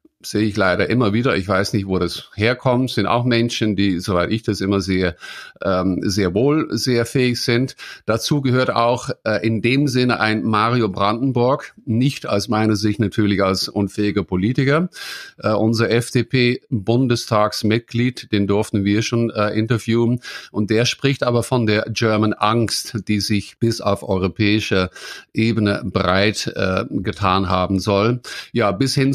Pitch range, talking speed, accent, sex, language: 100-120 Hz, 145 wpm, German, male, English